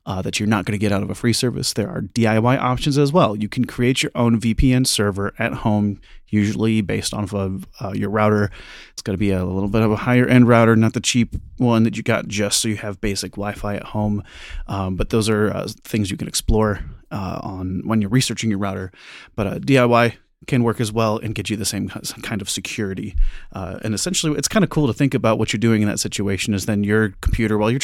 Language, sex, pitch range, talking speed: English, male, 100-125 Hz, 250 wpm